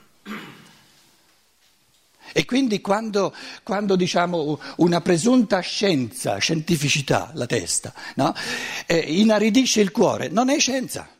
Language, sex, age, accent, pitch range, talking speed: Italian, male, 60-79, native, 115-170 Hz, 95 wpm